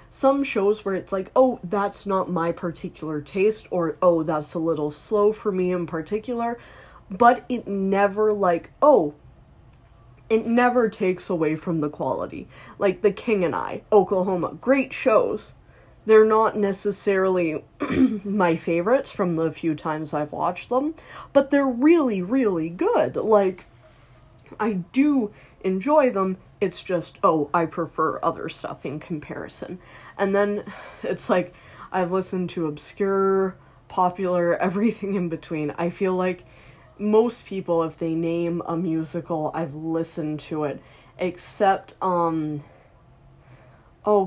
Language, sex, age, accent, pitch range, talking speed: English, female, 20-39, American, 160-200 Hz, 135 wpm